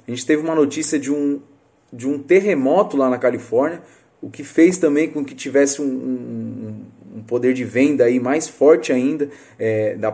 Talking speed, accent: 190 wpm, Brazilian